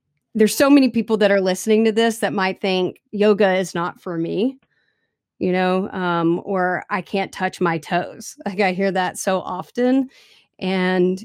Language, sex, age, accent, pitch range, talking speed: English, female, 30-49, American, 175-200 Hz, 175 wpm